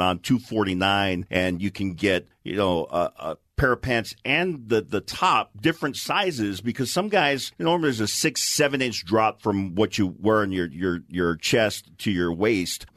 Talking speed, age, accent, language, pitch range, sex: 210 wpm, 50-69, American, English, 95-135 Hz, male